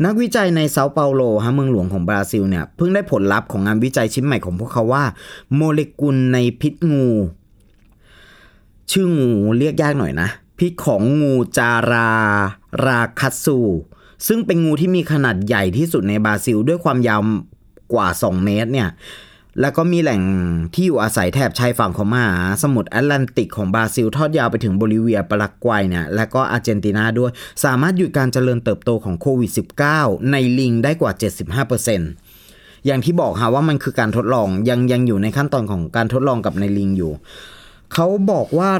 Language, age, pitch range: Thai, 30-49, 105-145 Hz